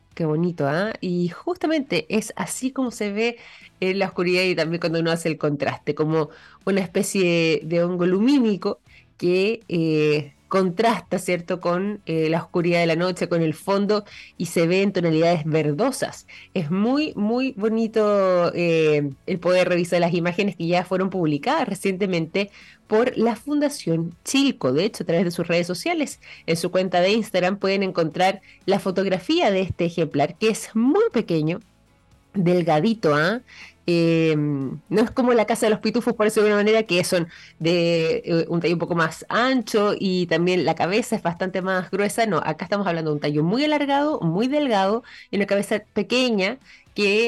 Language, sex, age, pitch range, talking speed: Spanish, female, 20-39, 170-215 Hz, 175 wpm